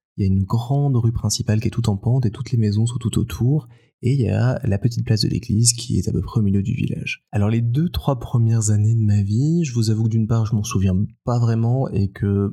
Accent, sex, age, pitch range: French, male, 20-39, 100-120 Hz